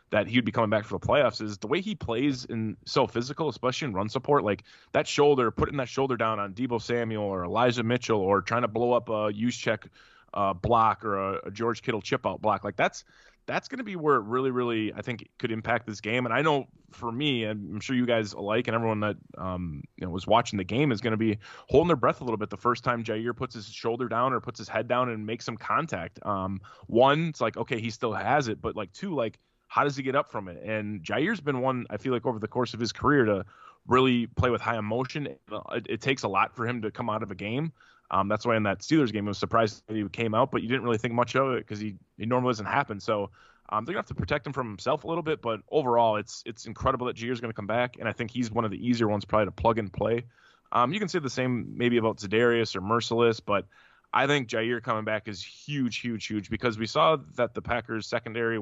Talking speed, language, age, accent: 270 wpm, English, 20-39, American